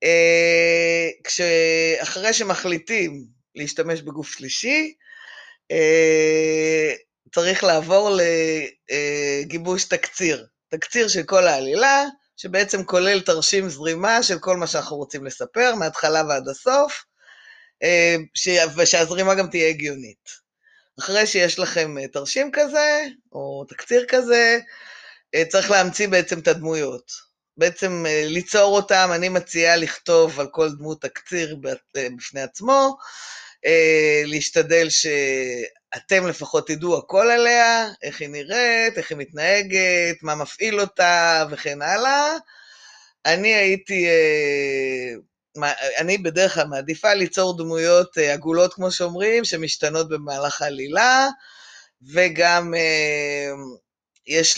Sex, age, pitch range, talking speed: female, 20-39, 155-205 Hz, 100 wpm